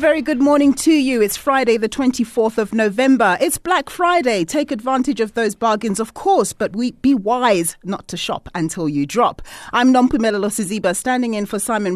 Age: 40-59